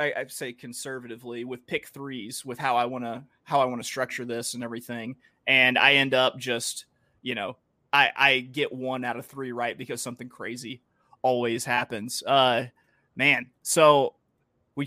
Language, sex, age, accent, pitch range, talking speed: English, male, 30-49, American, 125-160 Hz, 175 wpm